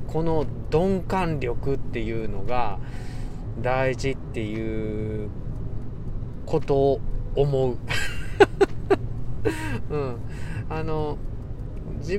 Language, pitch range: Japanese, 115-170 Hz